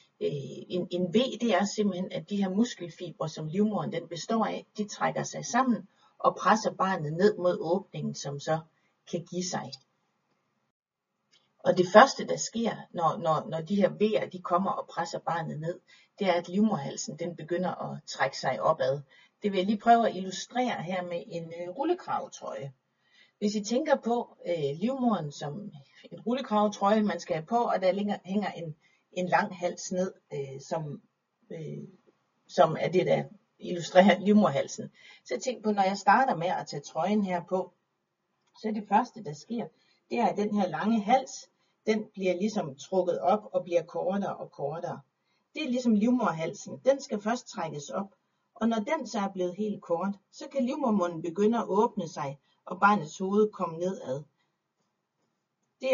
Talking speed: 175 wpm